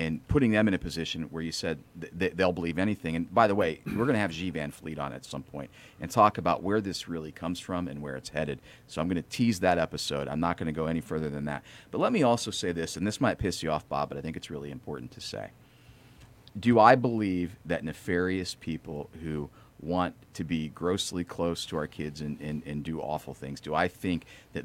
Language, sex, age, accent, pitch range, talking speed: English, male, 40-59, American, 80-105 Hz, 245 wpm